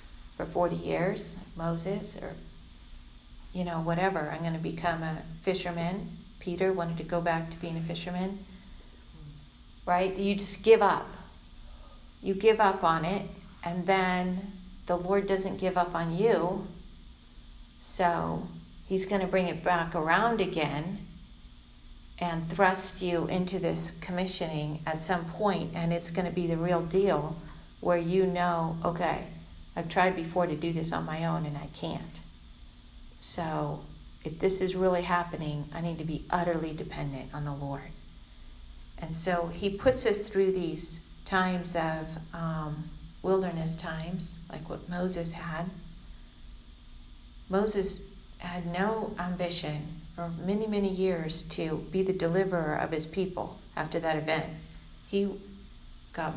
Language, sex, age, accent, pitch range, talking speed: English, female, 50-69, American, 155-190 Hz, 140 wpm